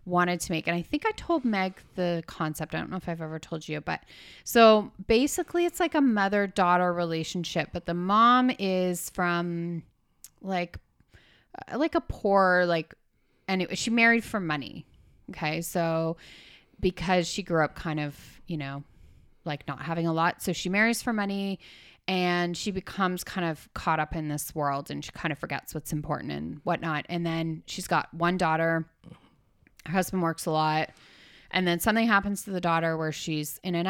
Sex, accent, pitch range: female, American, 155-190 Hz